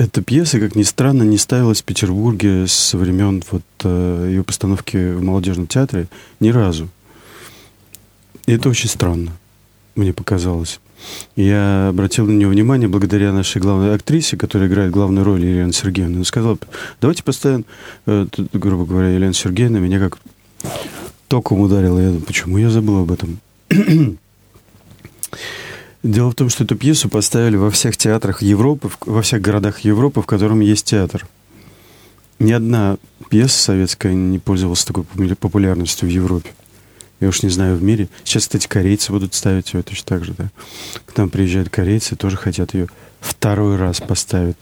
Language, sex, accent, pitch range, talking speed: Russian, male, native, 95-110 Hz, 155 wpm